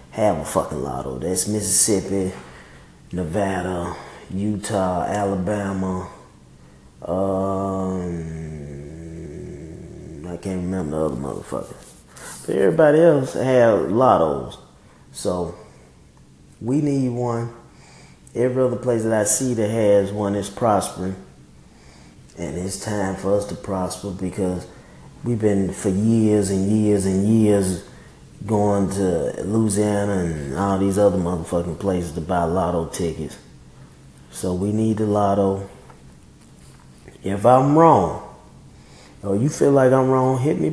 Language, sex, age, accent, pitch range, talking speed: English, male, 20-39, American, 90-115 Hz, 120 wpm